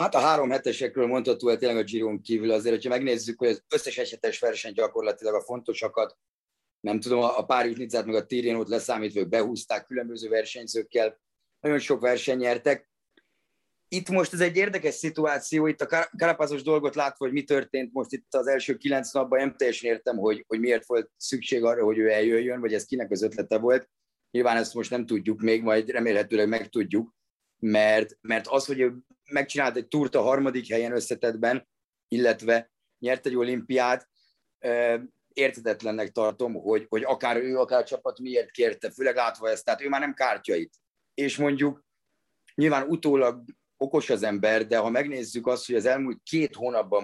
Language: Hungarian